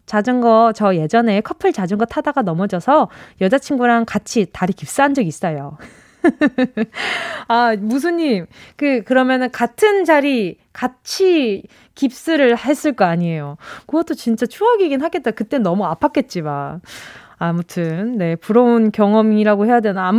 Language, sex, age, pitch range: Korean, female, 20-39, 200-300 Hz